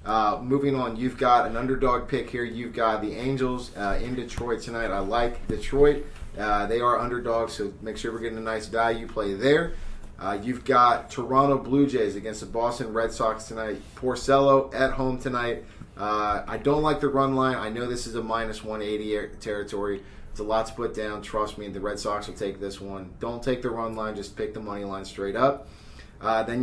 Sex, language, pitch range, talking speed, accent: male, English, 105-125 Hz, 215 wpm, American